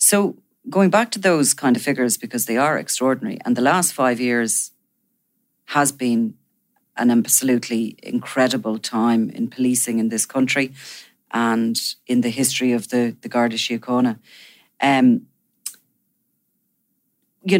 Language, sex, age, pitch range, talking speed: English, female, 40-59, 120-135 Hz, 130 wpm